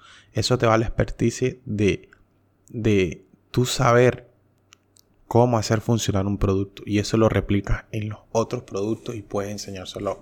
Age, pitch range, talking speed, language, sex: 20-39, 100-115 Hz, 145 wpm, Spanish, male